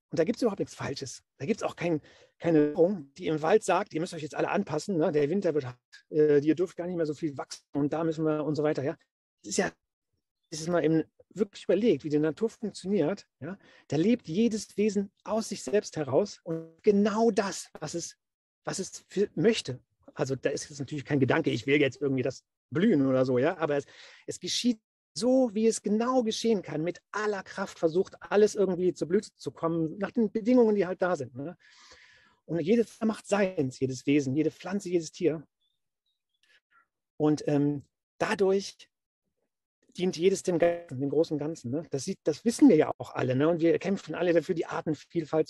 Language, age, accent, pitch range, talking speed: German, 40-59, German, 150-200 Hz, 210 wpm